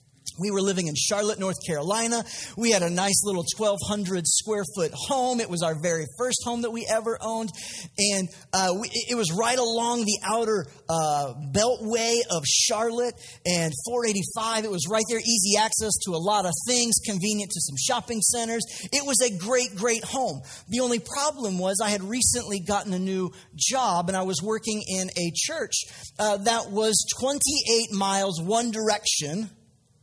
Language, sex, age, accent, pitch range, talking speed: English, male, 40-59, American, 175-230 Hz, 170 wpm